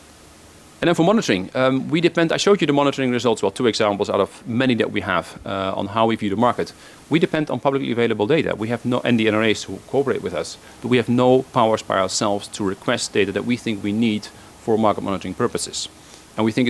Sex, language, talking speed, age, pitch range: male, English, 240 wpm, 40-59, 100-130 Hz